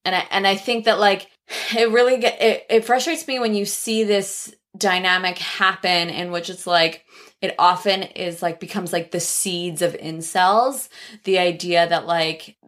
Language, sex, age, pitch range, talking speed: English, female, 20-39, 175-210 Hz, 180 wpm